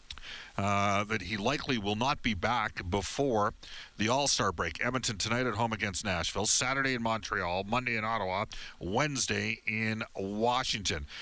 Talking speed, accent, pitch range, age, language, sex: 145 wpm, American, 100-130 Hz, 40-59, English, male